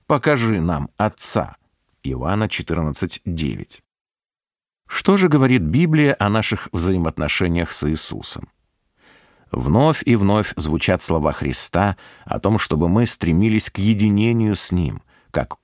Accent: native